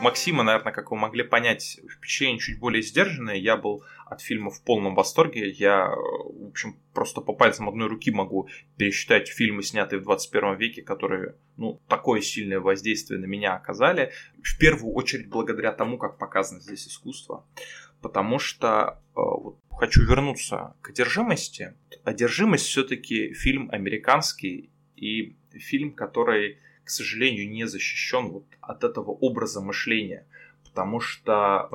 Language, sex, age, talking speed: Russian, male, 20-39, 140 wpm